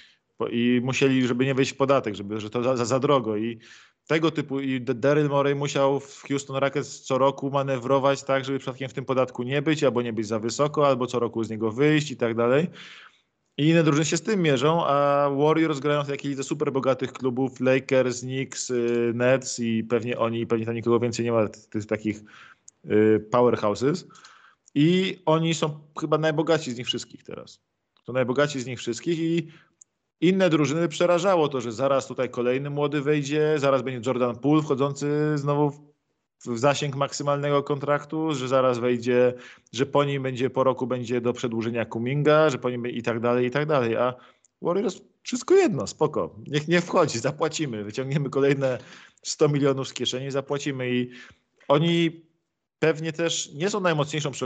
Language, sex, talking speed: Polish, male, 175 wpm